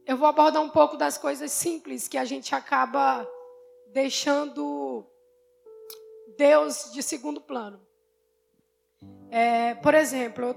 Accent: Brazilian